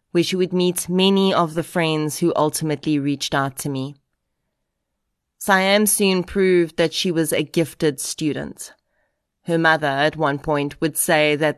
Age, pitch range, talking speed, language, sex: 30-49, 150-175 Hz, 160 wpm, English, female